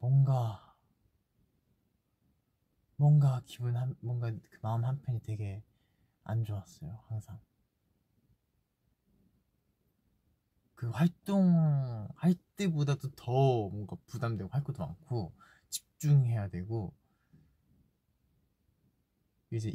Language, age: Korean, 20-39